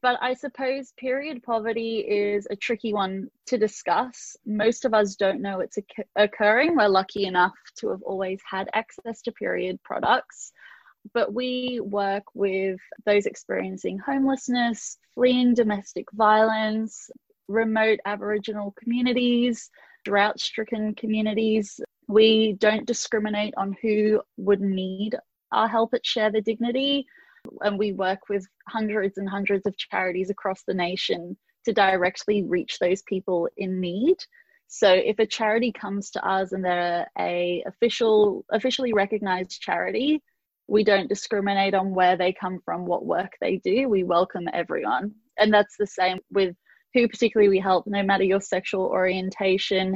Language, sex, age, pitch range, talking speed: English, female, 20-39, 195-230 Hz, 145 wpm